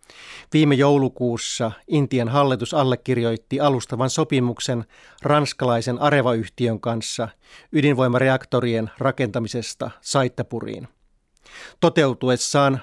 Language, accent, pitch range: Finnish, native, 115-140 Hz